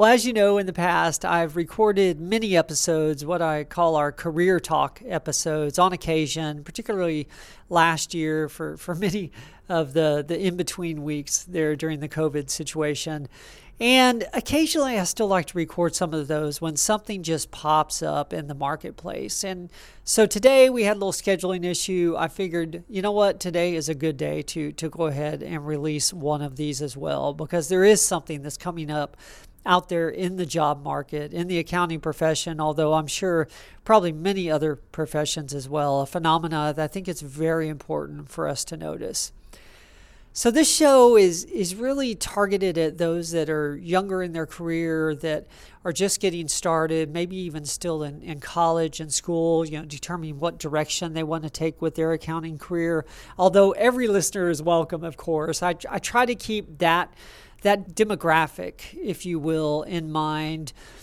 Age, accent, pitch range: 40-59, American, 155-185 Hz